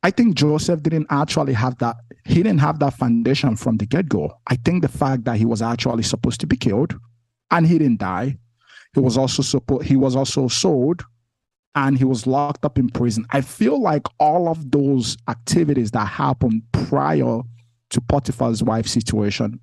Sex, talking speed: male, 185 wpm